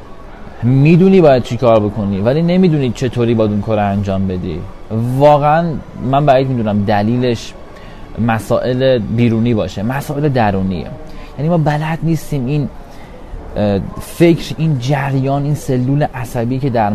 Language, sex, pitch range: Persian, male, 110-145 Hz